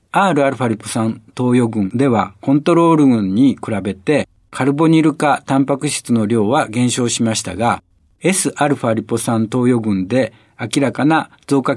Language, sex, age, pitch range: Japanese, male, 60-79, 110-155 Hz